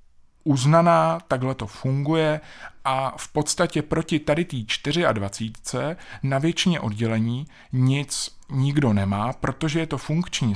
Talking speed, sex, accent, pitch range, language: 130 wpm, male, native, 115-140 Hz, Czech